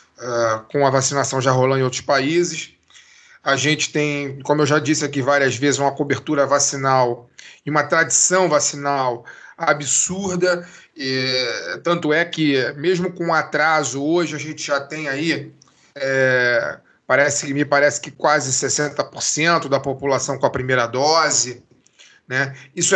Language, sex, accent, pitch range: Portuguese, male, Brazilian, 140-170 Hz